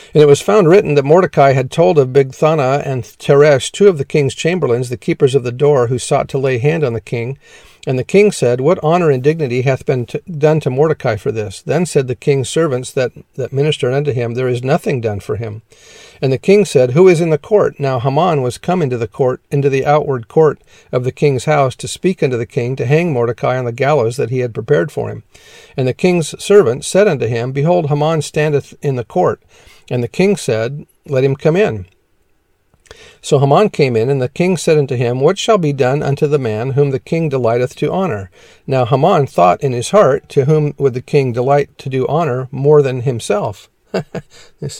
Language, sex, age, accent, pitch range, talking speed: English, male, 50-69, American, 125-155 Hz, 220 wpm